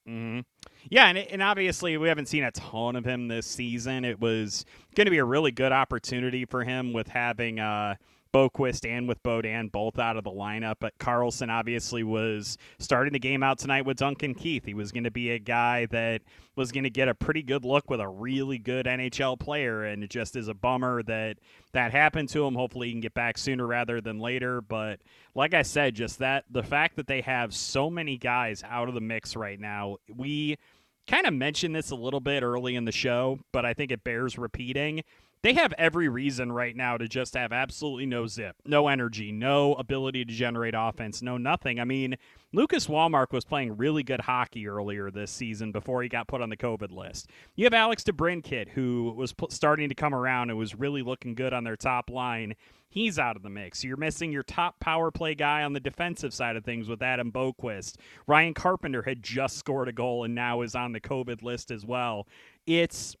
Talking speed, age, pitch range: 215 wpm, 30-49, 115-140 Hz